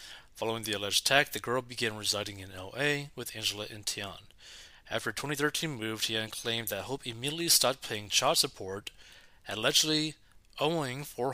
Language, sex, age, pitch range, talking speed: English, male, 30-49, 105-140 Hz, 150 wpm